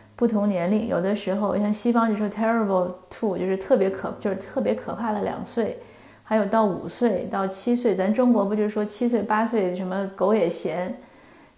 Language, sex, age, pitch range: Chinese, female, 20-39, 190-230 Hz